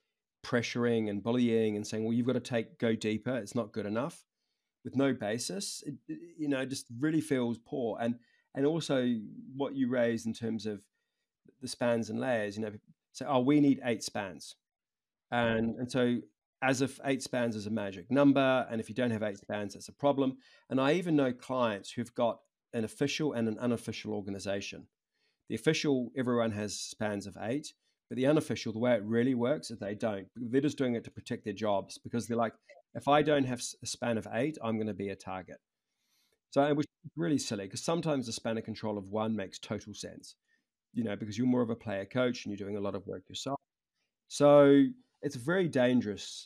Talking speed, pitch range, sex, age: 210 wpm, 110-145 Hz, male, 40-59